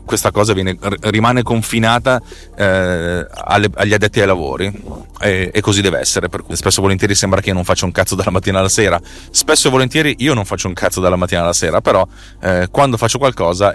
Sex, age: male, 30-49